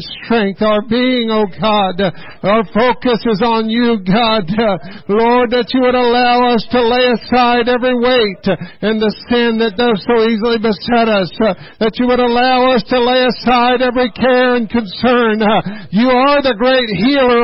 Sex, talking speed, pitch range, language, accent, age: male, 165 wpm, 225-270 Hz, English, American, 50-69